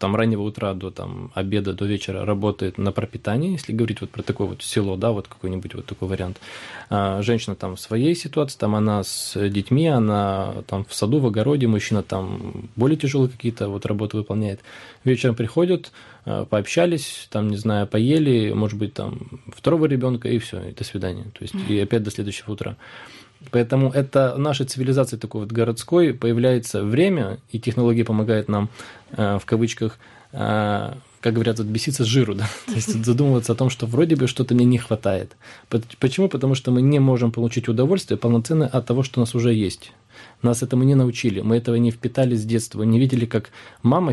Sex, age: male, 20-39